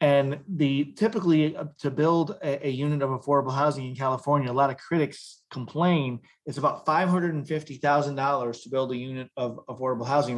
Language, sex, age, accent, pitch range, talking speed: English, male, 30-49, American, 130-155 Hz, 170 wpm